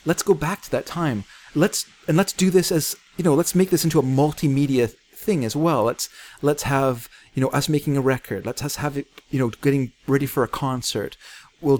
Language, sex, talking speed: English, male, 225 wpm